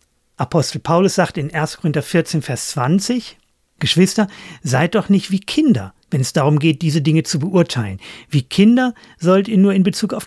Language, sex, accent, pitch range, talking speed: German, male, German, 130-190 Hz, 180 wpm